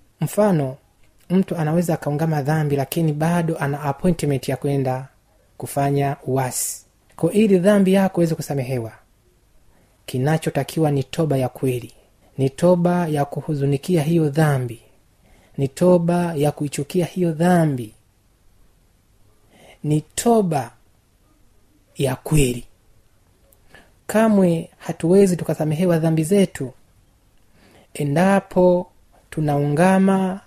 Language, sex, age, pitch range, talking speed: Swahili, male, 30-49, 115-175 Hz, 95 wpm